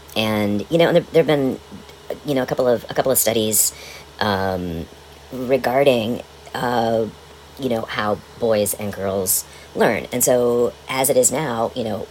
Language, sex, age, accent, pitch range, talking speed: English, male, 40-59, American, 80-105 Hz, 170 wpm